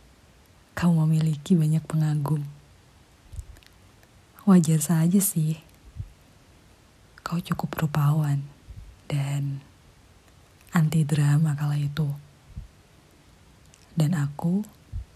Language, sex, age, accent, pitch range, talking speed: Indonesian, female, 20-39, native, 130-170 Hz, 65 wpm